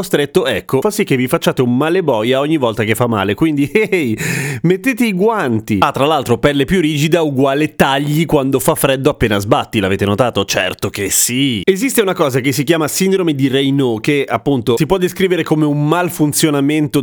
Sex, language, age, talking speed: male, Italian, 30-49, 195 wpm